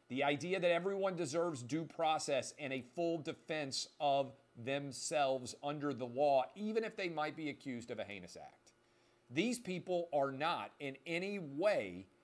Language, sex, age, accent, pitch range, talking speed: English, male, 40-59, American, 130-175 Hz, 160 wpm